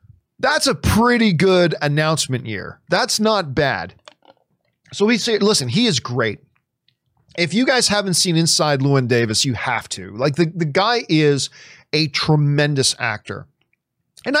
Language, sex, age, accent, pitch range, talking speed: English, male, 40-59, American, 135-205 Hz, 150 wpm